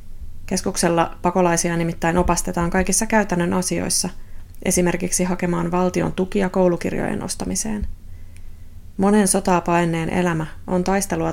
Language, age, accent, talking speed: Finnish, 20-39, native, 95 wpm